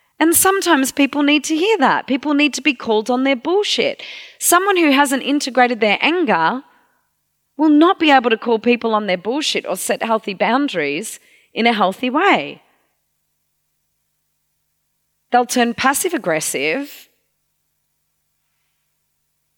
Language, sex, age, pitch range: English, female, 30-49, 180-265 Hz